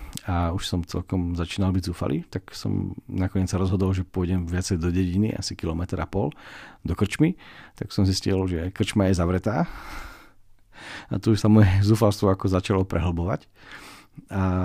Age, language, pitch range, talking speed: 40-59, Slovak, 90-110 Hz, 160 wpm